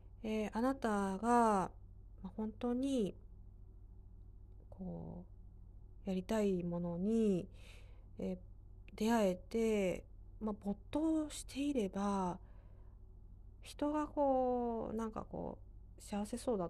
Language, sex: Japanese, female